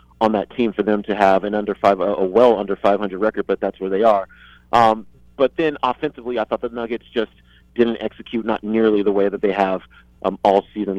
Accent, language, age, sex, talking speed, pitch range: American, English, 40-59, male, 225 wpm, 100-125 Hz